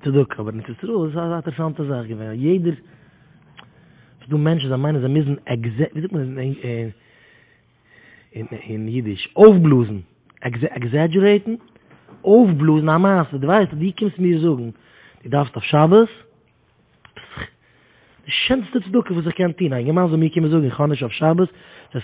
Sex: male